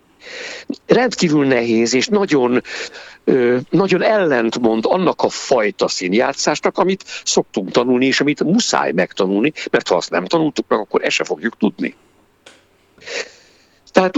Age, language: 60-79, Hungarian